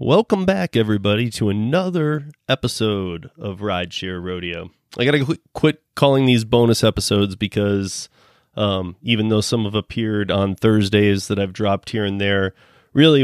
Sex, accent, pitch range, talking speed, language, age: male, American, 100-130 Hz, 150 wpm, English, 30-49